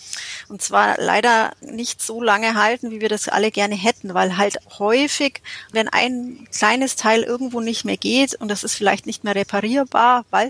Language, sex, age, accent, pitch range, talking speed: German, female, 30-49, German, 205-245 Hz, 185 wpm